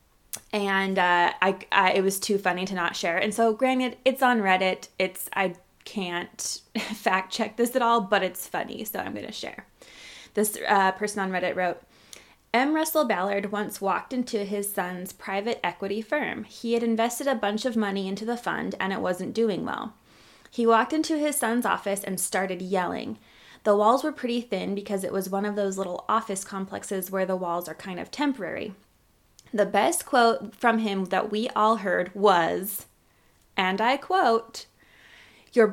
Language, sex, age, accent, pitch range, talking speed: English, female, 20-39, American, 190-240 Hz, 185 wpm